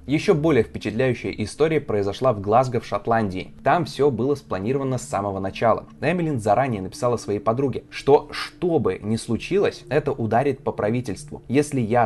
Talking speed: 160 wpm